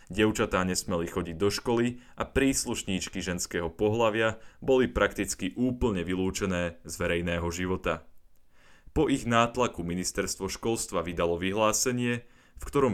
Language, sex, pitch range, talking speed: Slovak, male, 90-115 Hz, 115 wpm